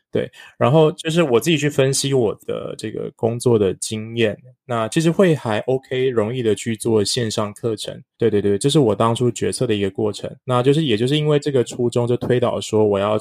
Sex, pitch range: male, 105-130 Hz